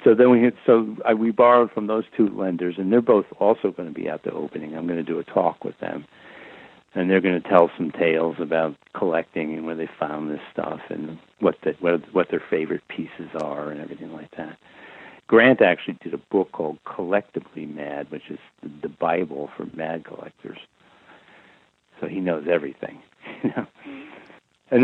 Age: 60-79